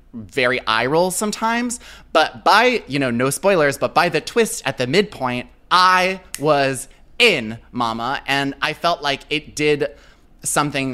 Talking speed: 155 wpm